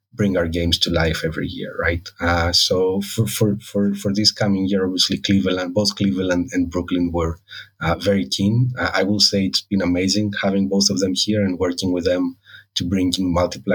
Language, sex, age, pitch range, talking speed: English, male, 30-49, 85-100 Hz, 205 wpm